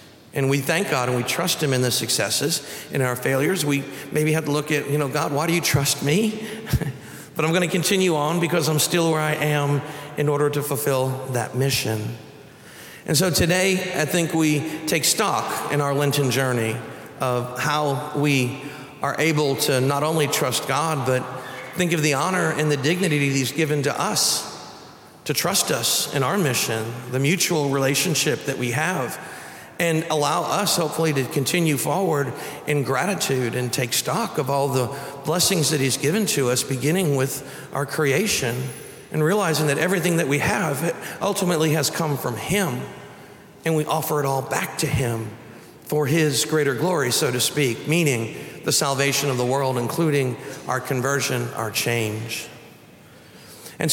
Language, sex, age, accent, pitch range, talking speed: English, male, 50-69, American, 130-160 Hz, 170 wpm